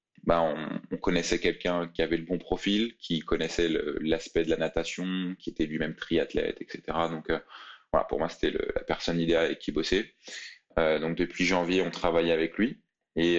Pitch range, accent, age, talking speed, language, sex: 80-90 Hz, French, 20-39, 195 wpm, French, male